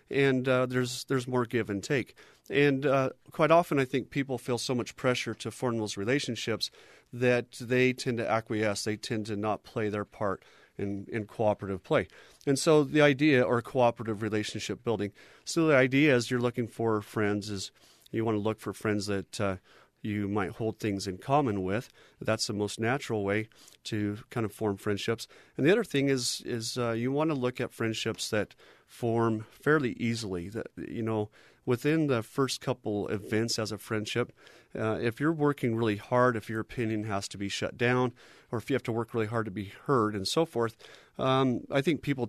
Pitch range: 105-130 Hz